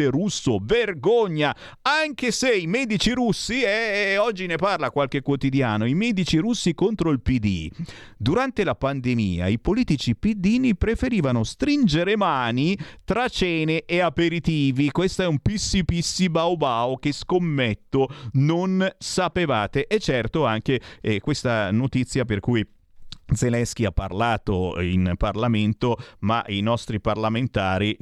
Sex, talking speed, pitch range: male, 135 wpm, 105-160 Hz